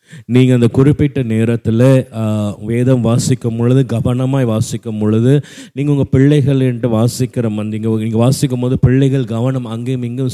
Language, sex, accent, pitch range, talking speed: Tamil, male, native, 115-135 Hz, 130 wpm